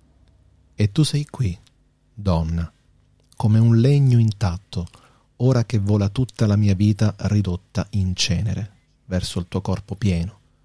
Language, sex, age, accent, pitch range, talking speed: Italian, male, 40-59, native, 90-120 Hz, 135 wpm